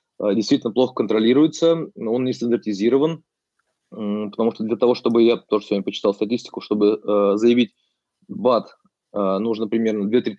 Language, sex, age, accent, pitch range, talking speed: Russian, male, 20-39, native, 105-130 Hz, 140 wpm